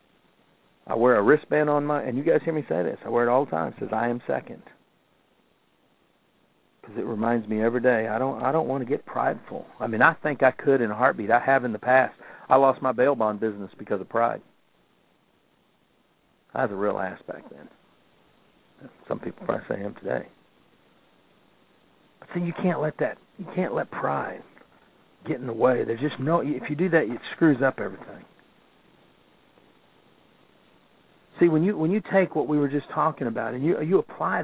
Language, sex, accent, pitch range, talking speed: English, male, American, 130-180 Hz, 200 wpm